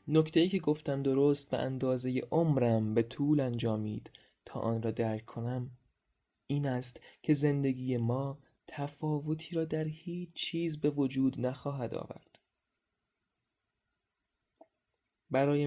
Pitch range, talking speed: 115-140 Hz, 115 wpm